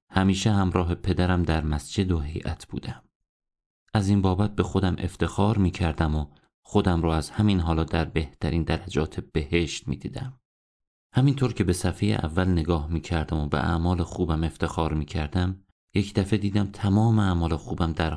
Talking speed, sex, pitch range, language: 150 wpm, male, 80-100 Hz, Persian